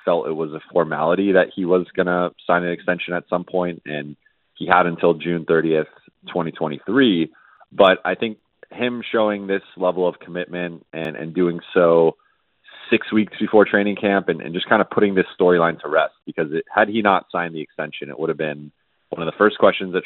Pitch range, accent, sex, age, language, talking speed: 80-95 Hz, American, male, 30-49, English, 205 wpm